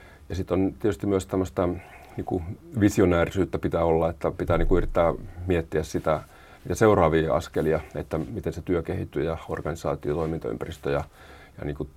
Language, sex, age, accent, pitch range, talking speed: Finnish, male, 40-59, native, 80-95 Hz, 145 wpm